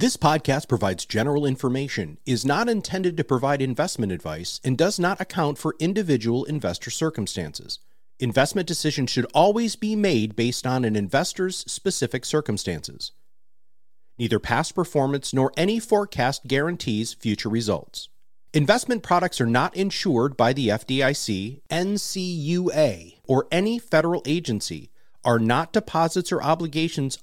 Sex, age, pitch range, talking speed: male, 40-59, 115-170 Hz, 130 wpm